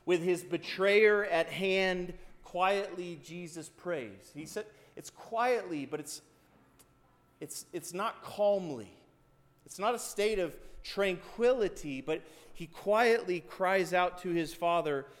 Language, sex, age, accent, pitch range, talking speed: English, male, 30-49, American, 135-190 Hz, 125 wpm